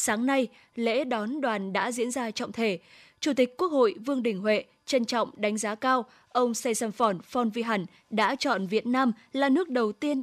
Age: 10-29